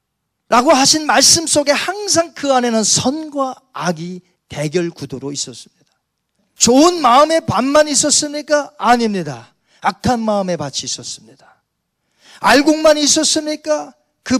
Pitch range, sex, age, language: 185-285 Hz, male, 40-59, Korean